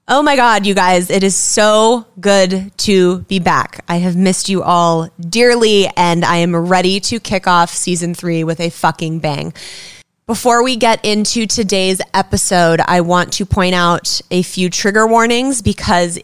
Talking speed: 175 wpm